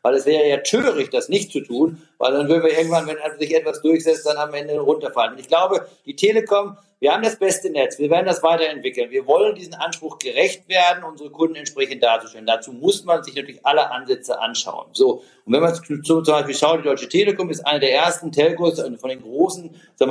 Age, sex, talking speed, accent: 50-69, male, 220 wpm, German